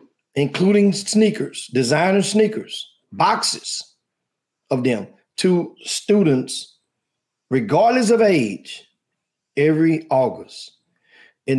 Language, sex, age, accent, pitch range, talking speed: English, male, 40-59, American, 125-155 Hz, 80 wpm